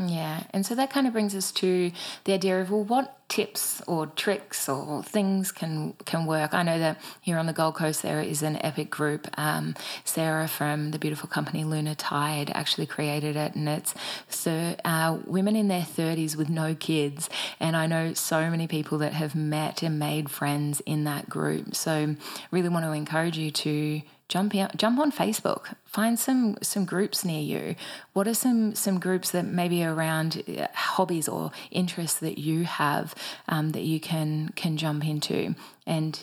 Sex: female